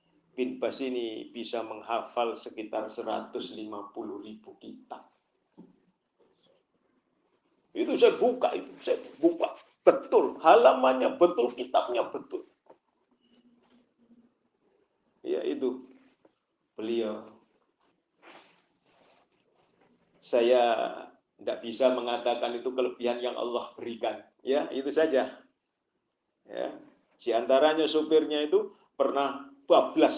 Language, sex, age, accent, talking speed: Indonesian, male, 50-69, native, 85 wpm